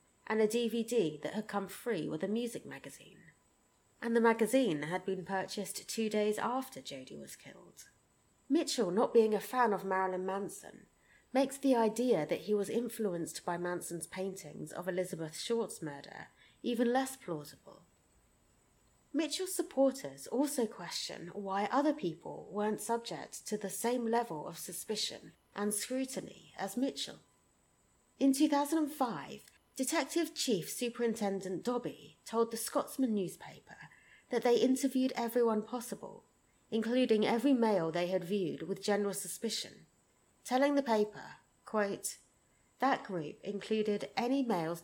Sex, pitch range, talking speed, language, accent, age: female, 185-240 Hz, 135 wpm, English, British, 30-49